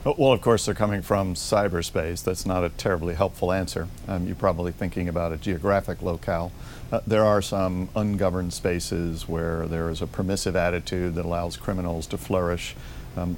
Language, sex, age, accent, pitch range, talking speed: English, male, 50-69, American, 85-95 Hz, 175 wpm